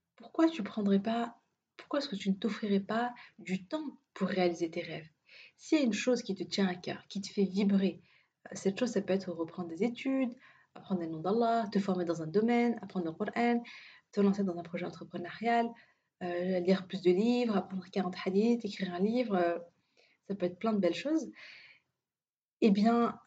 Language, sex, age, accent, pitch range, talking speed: French, female, 30-49, French, 180-225 Hz, 200 wpm